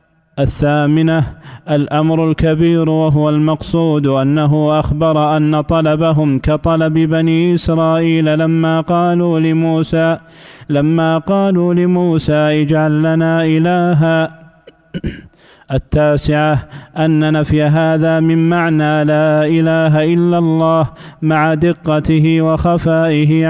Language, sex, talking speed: Arabic, male, 80 wpm